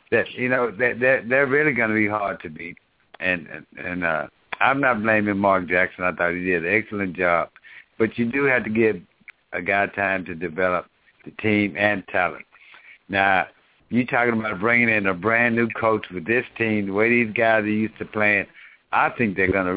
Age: 60-79